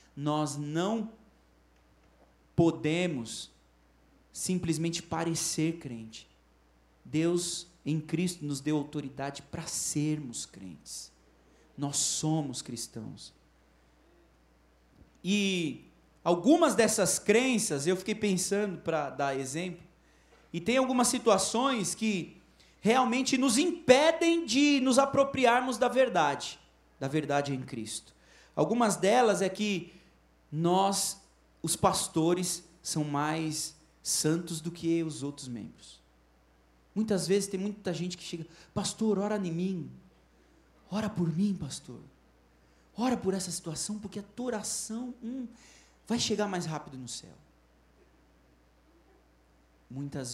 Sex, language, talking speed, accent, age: male, Portuguese, 110 wpm, Brazilian, 40-59